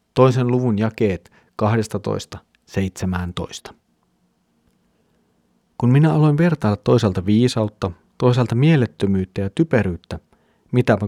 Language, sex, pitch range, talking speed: Finnish, male, 105-130 Hz, 80 wpm